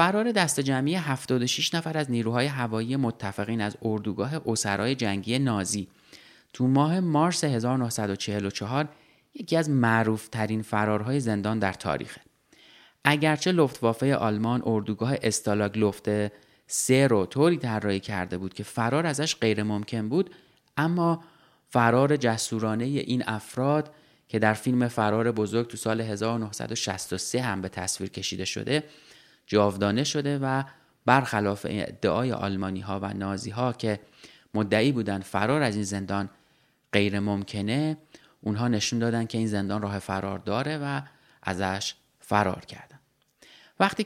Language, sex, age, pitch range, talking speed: Persian, male, 30-49, 105-140 Hz, 125 wpm